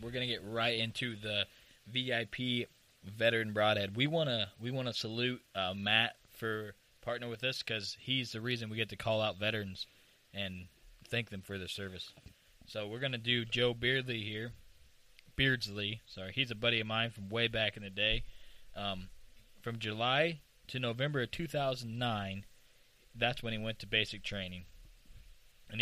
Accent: American